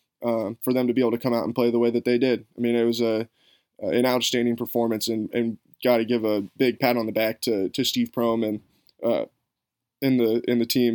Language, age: English, 20-39